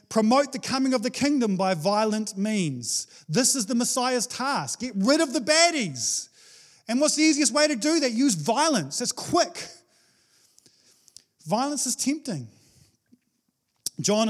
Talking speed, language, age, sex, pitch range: 145 wpm, English, 30-49, male, 160-245 Hz